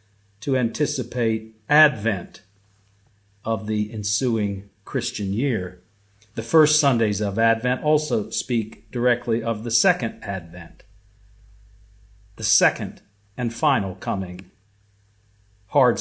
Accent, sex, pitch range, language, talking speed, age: American, male, 100-140 Hz, English, 95 wpm, 50-69